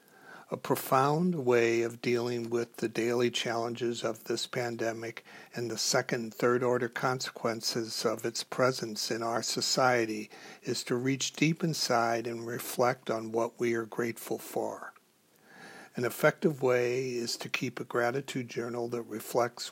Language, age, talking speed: English, 60-79, 145 wpm